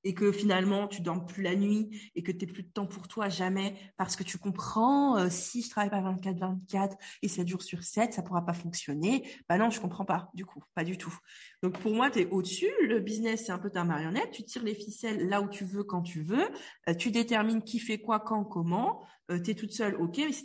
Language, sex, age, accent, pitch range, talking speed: French, female, 20-39, French, 175-220 Hz, 250 wpm